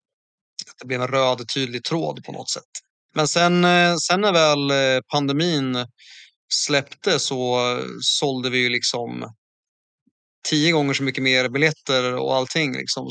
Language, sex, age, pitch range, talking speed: Swedish, male, 30-49, 125-150 Hz, 140 wpm